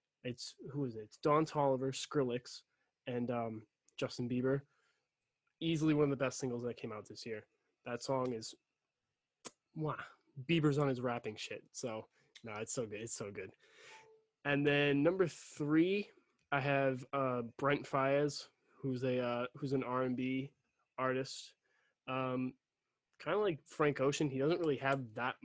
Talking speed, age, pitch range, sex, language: 160 wpm, 20-39, 120-145 Hz, male, English